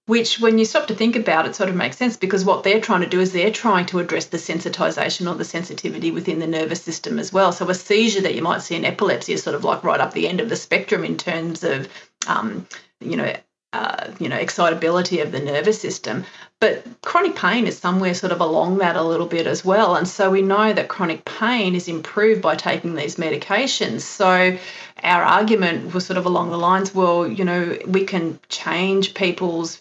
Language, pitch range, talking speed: English, 175-195 Hz, 225 wpm